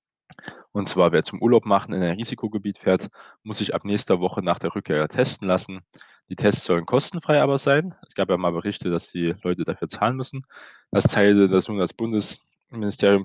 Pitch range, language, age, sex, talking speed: 95-115 Hz, German, 20-39, male, 185 wpm